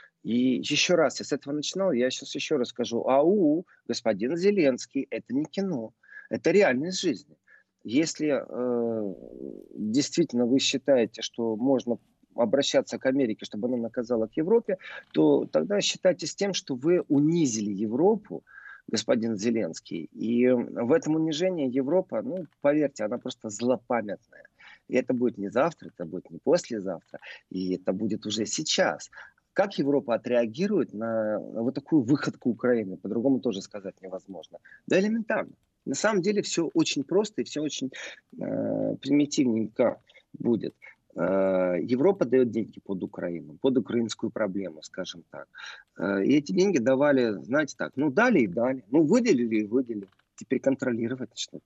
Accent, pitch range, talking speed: native, 110-160 Hz, 145 wpm